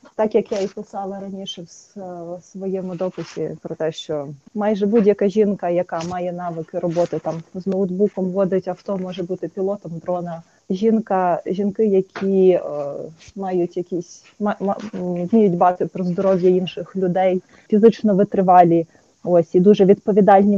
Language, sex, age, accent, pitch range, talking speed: Ukrainian, female, 20-39, native, 180-210 Hz, 135 wpm